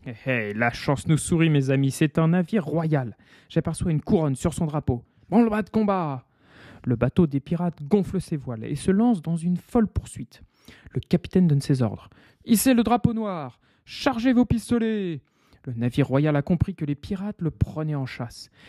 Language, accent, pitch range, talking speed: French, French, 135-205 Hz, 215 wpm